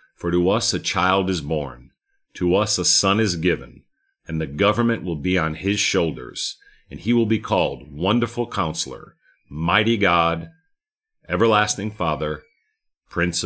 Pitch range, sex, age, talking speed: 85-120 Hz, male, 40-59, 145 wpm